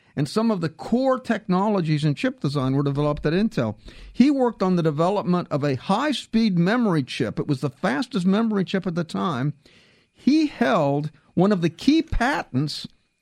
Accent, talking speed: American, 175 wpm